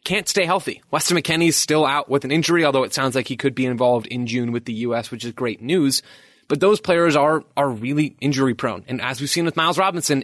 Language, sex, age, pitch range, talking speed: English, male, 20-39, 125-160 Hz, 245 wpm